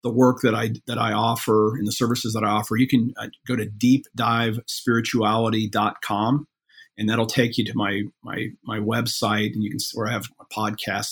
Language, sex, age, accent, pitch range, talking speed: English, male, 40-59, American, 105-125 Hz, 195 wpm